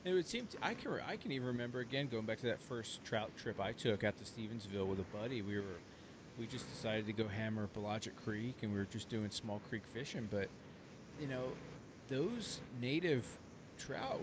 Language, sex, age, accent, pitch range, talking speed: English, male, 30-49, American, 105-140 Hz, 210 wpm